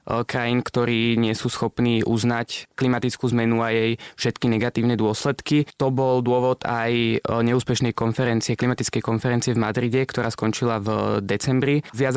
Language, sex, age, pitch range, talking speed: Slovak, male, 20-39, 115-125 Hz, 140 wpm